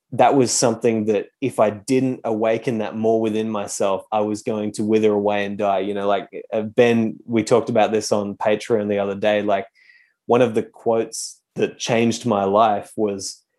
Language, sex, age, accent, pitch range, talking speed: English, male, 20-39, Australian, 105-130 Hz, 190 wpm